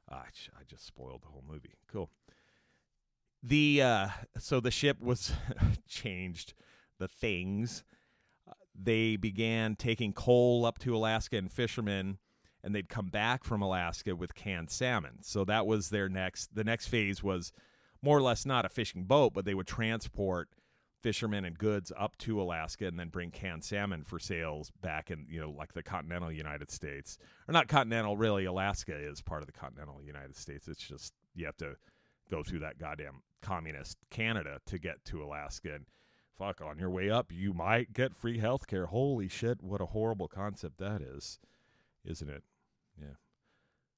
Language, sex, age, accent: English, male, 40-59, American